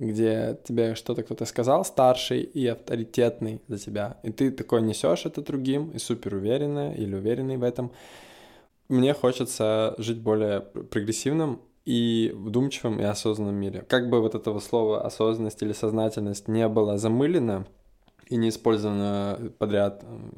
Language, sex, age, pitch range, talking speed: Russian, male, 20-39, 105-125 Hz, 140 wpm